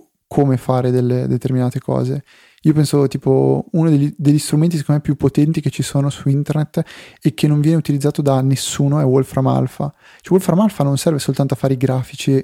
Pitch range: 130-150 Hz